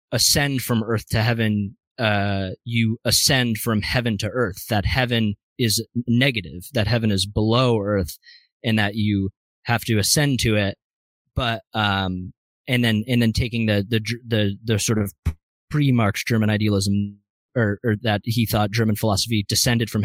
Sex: male